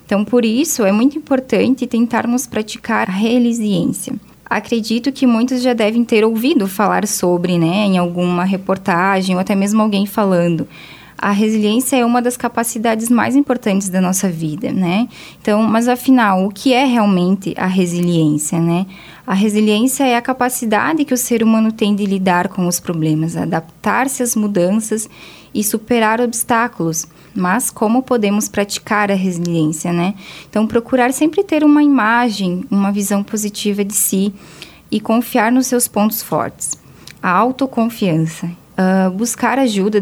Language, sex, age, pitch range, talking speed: Portuguese, female, 10-29, 185-235 Hz, 150 wpm